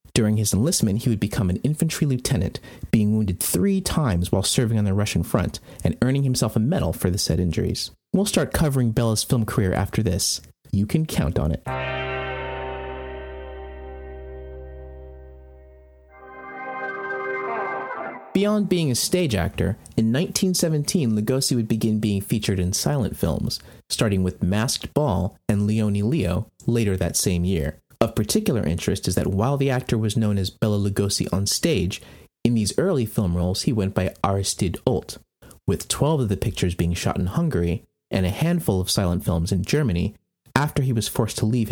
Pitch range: 90-125 Hz